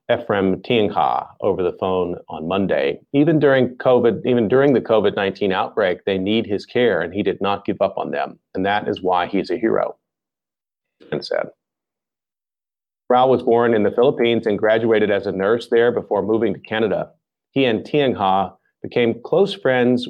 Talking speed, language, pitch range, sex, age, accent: 170 wpm, English, 100-125 Hz, male, 40-59, American